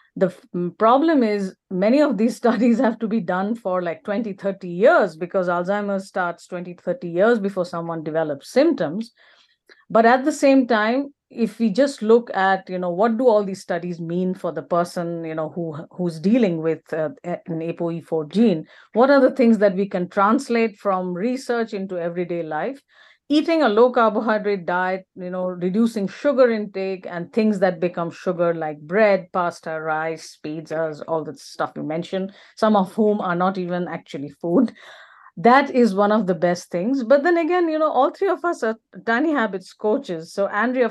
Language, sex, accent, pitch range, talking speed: English, female, Indian, 180-245 Hz, 185 wpm